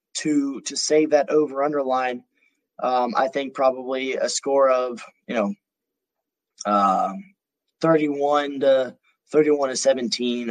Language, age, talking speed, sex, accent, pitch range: English, 20-39, 125 wpm, male, American, 130-165 Hz